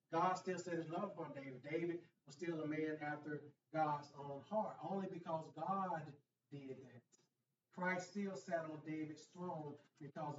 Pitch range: 145-185 Hz